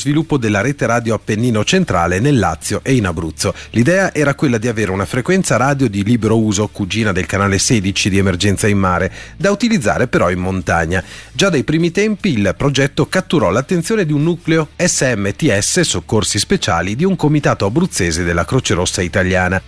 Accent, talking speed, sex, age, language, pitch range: native, 175 wpm, male, 40-59, Italian, 95-145 Hz